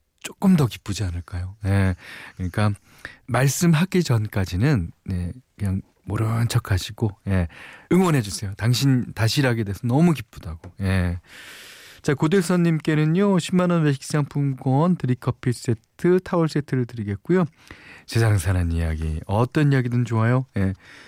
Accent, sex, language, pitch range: native, male, Korean, 100-150 Hz